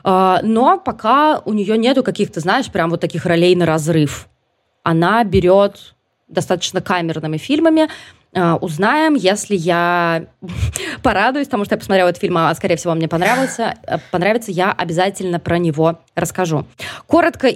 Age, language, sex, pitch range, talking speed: 20-39, Russian, female, 175-230 Hz, 135 wpm